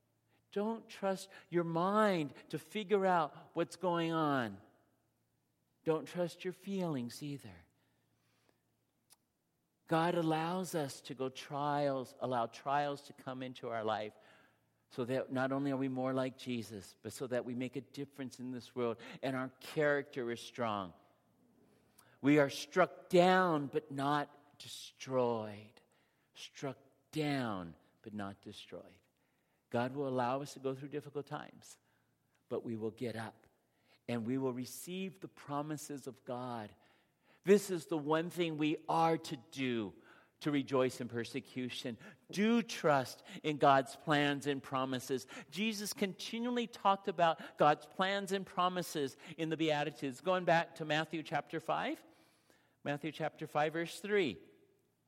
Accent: American